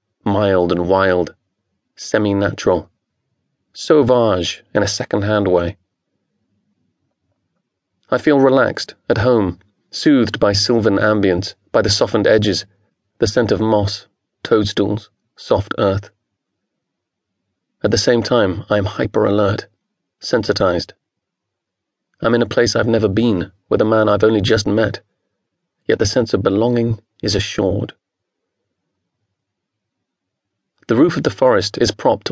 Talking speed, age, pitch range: 120 wpm, 30-49, 100-115 Hz